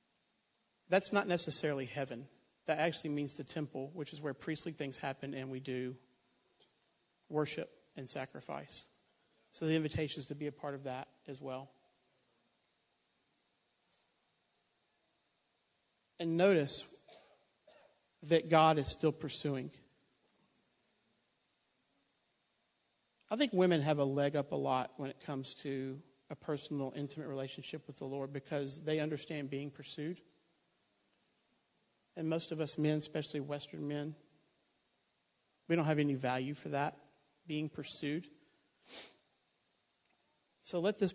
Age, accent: 40-59, American